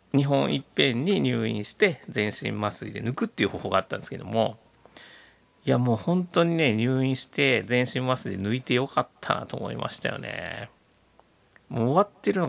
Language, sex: Japanese, male